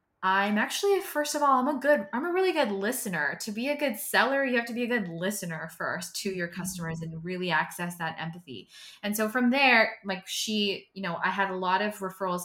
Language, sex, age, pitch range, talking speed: English, female, 20-39, 160-195 Hz, 230 wpm